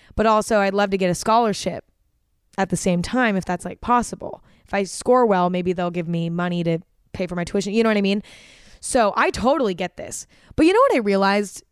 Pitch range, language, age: 190-235 Hz, English, 20-39